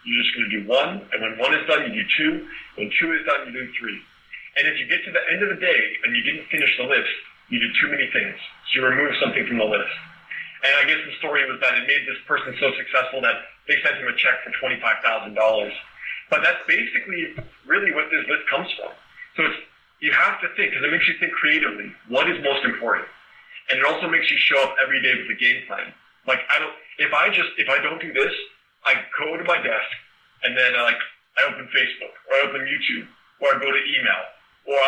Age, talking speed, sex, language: 40-59, 240 wpm, male, English